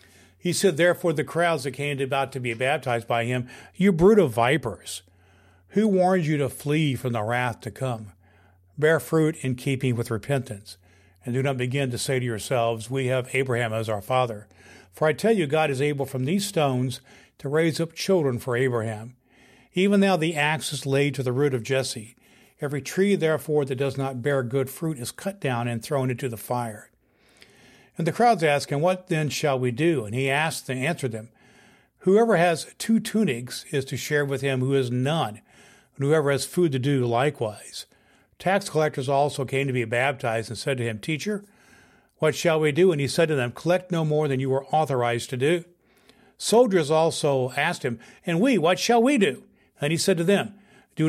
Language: English